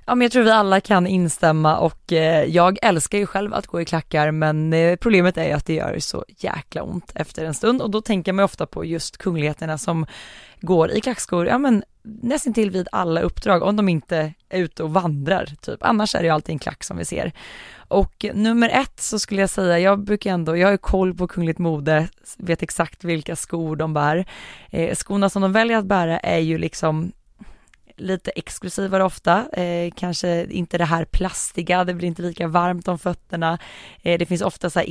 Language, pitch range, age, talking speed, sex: Swedish, 160-195 Hz, 20-39, 210 wpm, female